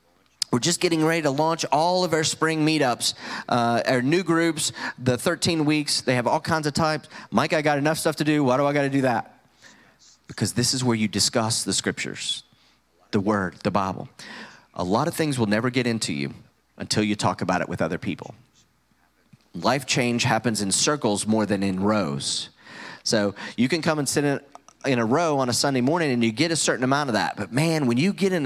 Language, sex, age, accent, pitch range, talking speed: English, male, 30-49, American, 115-155 Hz, 220 wpm